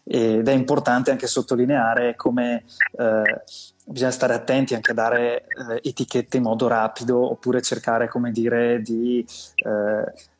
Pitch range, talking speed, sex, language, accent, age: 115-125 Hz, 140 wpm, male, Italian, native, 20-39